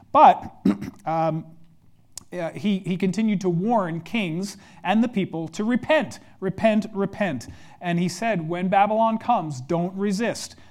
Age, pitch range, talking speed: 40-59, 160-205 Hz, 130 wpm